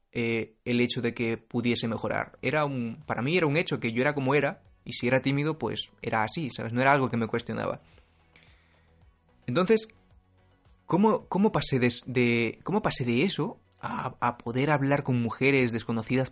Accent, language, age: Spanish, Spanish, 20-39